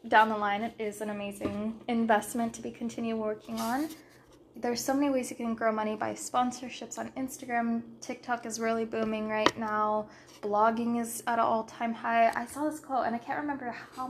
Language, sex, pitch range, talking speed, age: English, female, 215-245 Hz, 195 wpm, 10-29